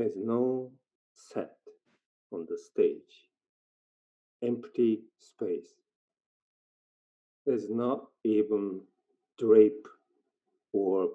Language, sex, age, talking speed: English, male, 50-69, 70 wpm